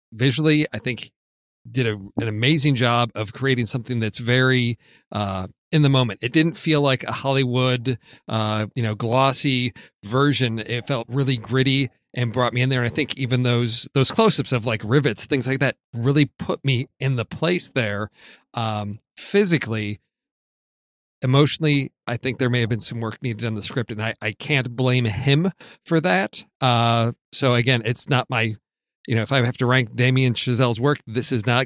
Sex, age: male, 40-59